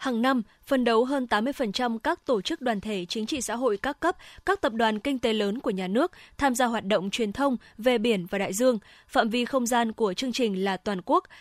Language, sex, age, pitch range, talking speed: Vietnamese, female, 20-39, 215-280 Hz, 245 wpm